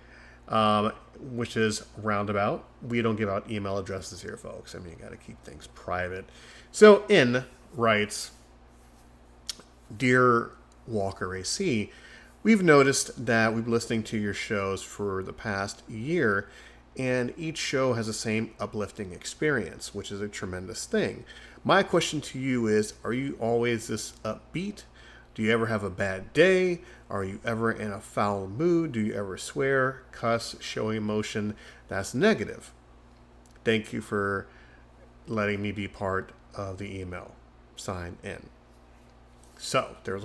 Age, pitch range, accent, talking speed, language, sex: 30-49, 95-120 Hz, American, 150 wpm, English, male